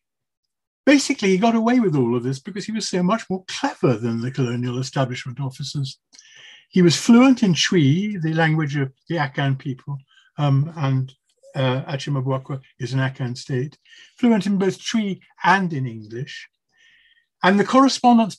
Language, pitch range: English, 135-190 Hz